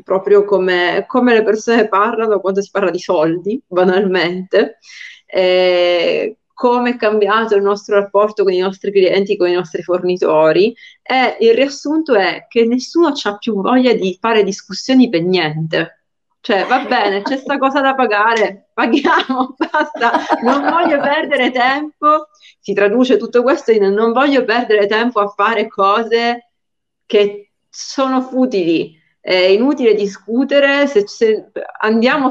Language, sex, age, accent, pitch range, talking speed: Italian, female, 30-49, native, 195-255 Hz, 140 wpm